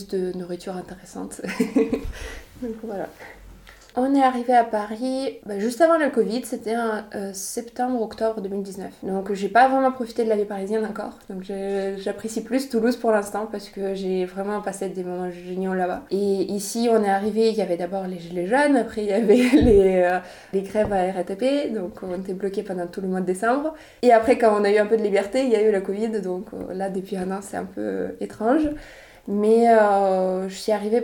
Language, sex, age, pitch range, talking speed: French, female, 20-39, 190-230 Hz, 210 wpm